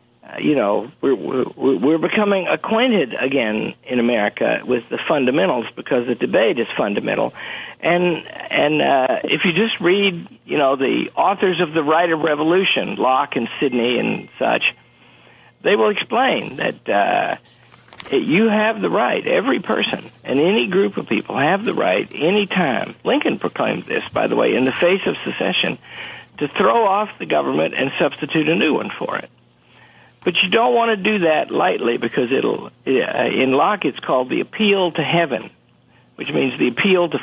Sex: male